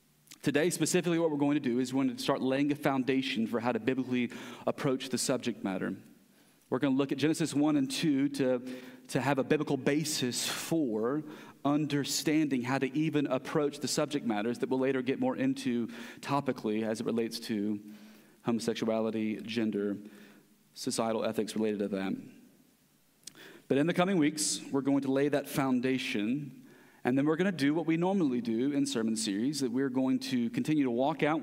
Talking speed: 185 wpm